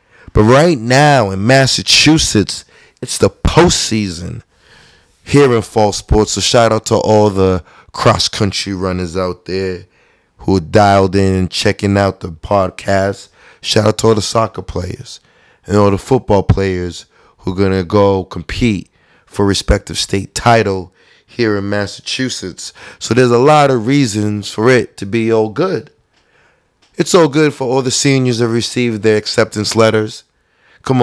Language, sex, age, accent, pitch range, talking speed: English, male, 20-39, American, 95-115 Hz, 155 wpm